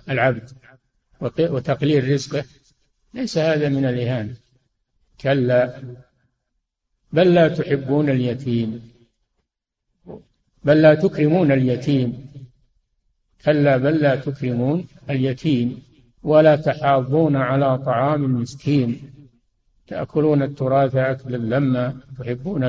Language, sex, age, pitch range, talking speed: Arabic, male, 60-79, 125-155 Hz, 80 wpm